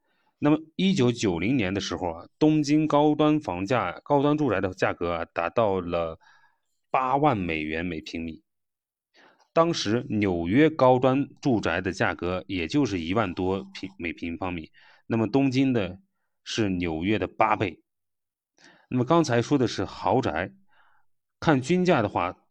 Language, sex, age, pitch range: Chinese, male, 30-49, 90-135 Hz